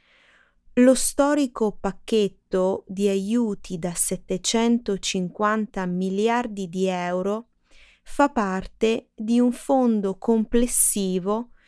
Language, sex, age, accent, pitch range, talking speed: Italian, female, 20-39, native, 185-245 Hz, 80 wpm